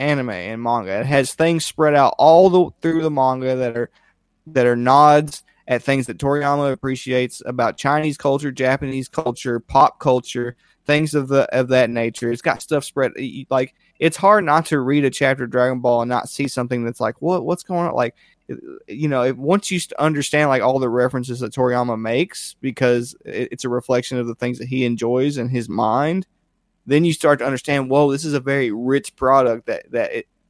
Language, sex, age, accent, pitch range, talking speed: English, male, 20-39, American, 125-150 Hz, 205 wpm